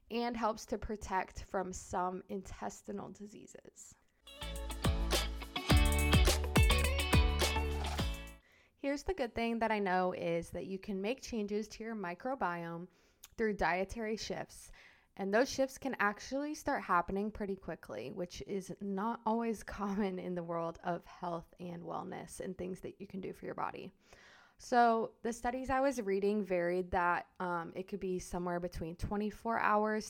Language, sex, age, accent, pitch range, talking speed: English, female, 20-39, American, 180-215 Hz, 145 wpm